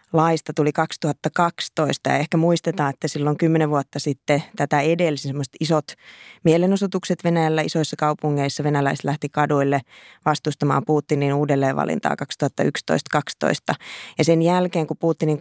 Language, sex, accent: Finnish, female, native